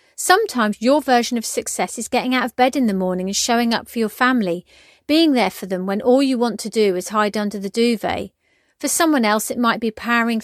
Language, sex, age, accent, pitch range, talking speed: English, female, 40-59, British, 210-255 Hz, 235 wpm